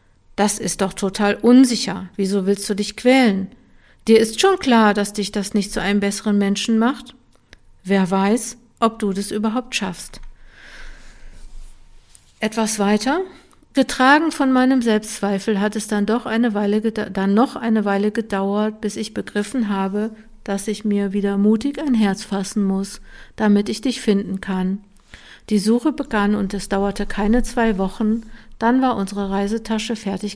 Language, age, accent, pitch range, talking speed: German, 50-69, German, 195-225 Hz, 155 wpm